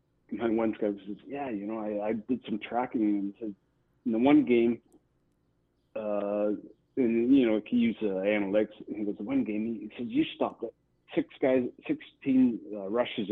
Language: English